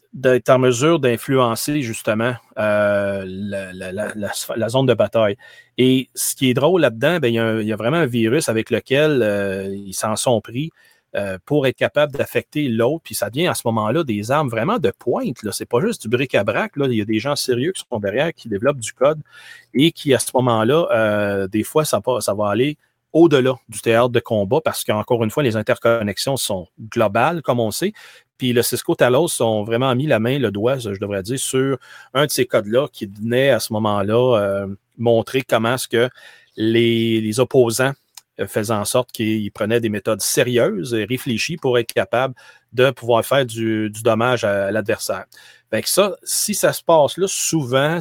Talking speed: 205 wpm